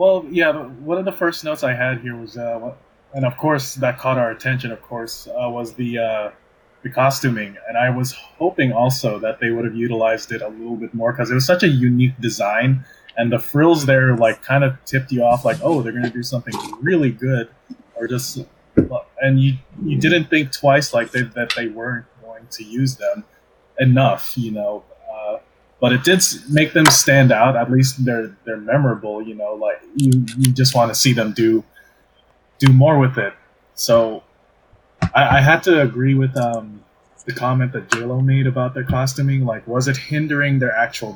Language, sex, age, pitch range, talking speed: English, male, 20-39, 115-135 Hz, 200 wpm